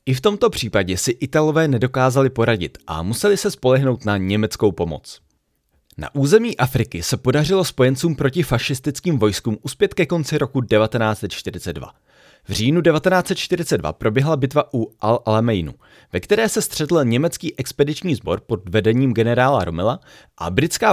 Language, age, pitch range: Czech, 30-49, 105-150 Hz